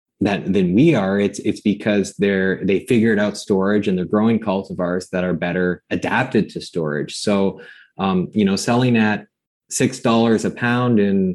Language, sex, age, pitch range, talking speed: English, male, 20-39, 95-125 Hz, 175 wpm